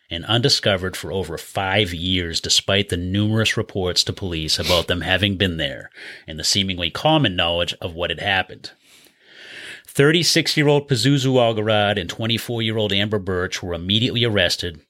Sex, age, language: male, 30-49, English